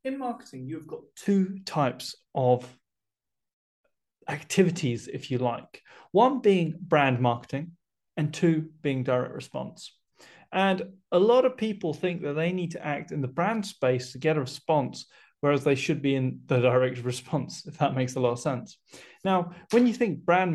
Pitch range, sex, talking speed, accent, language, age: 135-185 Hz, male, 170 wpm, British, English, 30-49